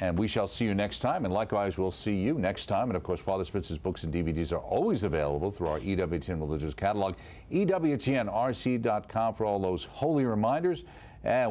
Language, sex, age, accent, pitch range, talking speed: English, male, 50-69, American, 90-125 Hz, 195 wpm